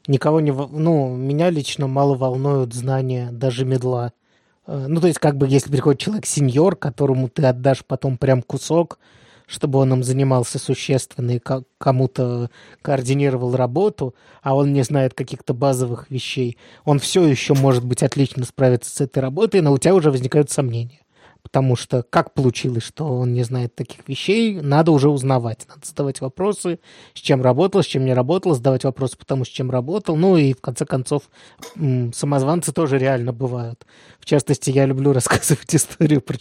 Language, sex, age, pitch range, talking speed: Russian, male, 20-39, 130-155 Hz, 165 wpm